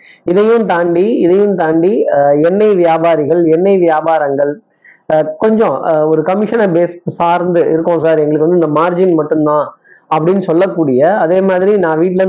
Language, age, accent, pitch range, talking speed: Tamil, 20-39, native, 155-185 Hz, 140 wpm